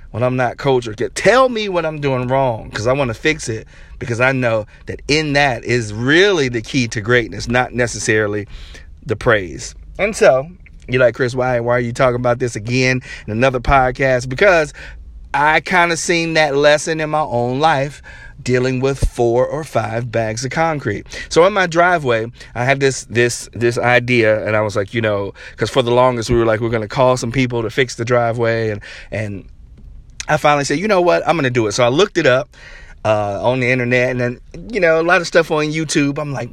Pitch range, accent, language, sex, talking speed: 115-145 Hz, American, English, male, 220 wpm